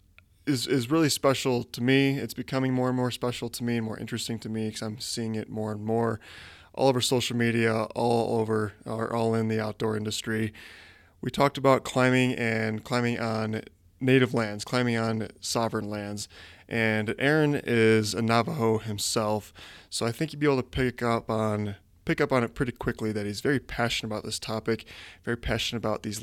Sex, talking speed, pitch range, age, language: male, 190 wpm, 105-125 Hz, 20-39, English